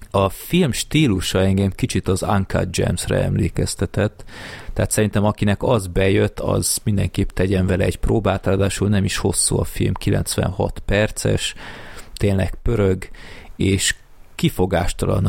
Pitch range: 95-105 Hz